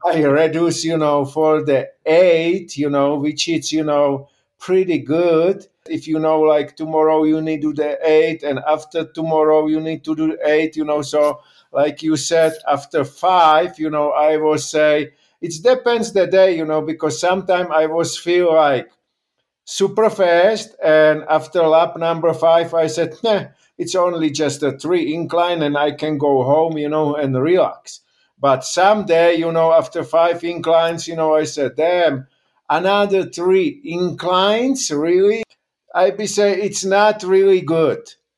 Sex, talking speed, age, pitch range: male, 165 wpm, 50-69, 155-185 Hz